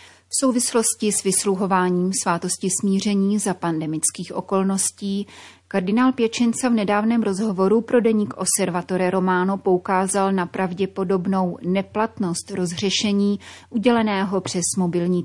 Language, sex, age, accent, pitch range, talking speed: Czech, female, 30-49, native, 175-205 Hz, 100 wpm